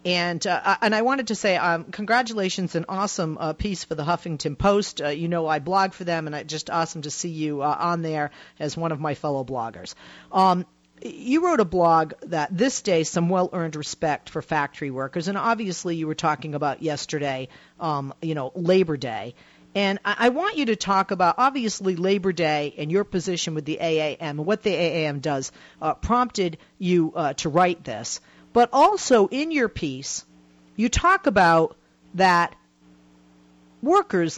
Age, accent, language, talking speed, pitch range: 40-59, American, English, 185 wpm, 155-205 Hz